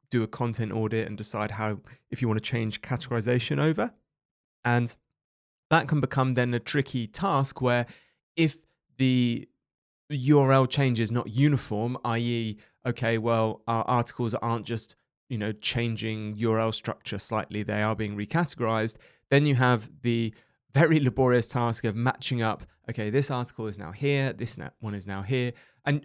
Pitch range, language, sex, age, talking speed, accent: 115-140 Hz, English, male, 20-39, 160 wpm, British